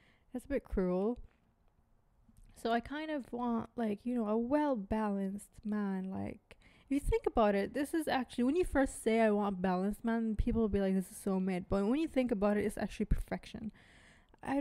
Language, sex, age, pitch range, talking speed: English, female, 20-39, 200-245 Hz, 210 wpm